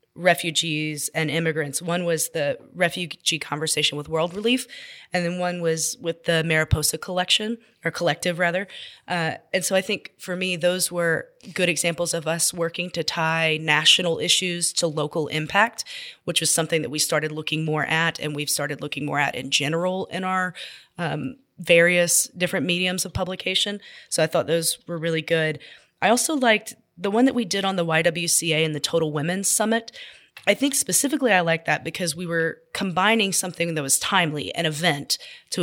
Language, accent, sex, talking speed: English, American, female, 180 wpm